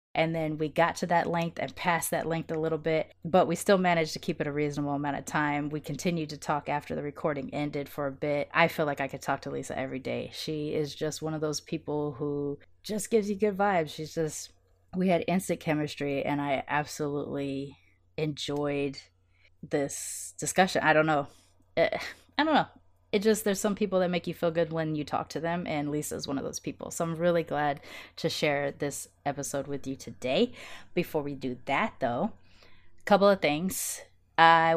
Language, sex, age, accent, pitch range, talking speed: English, female, 20-39, American, 145-175 Hz, 210 wpm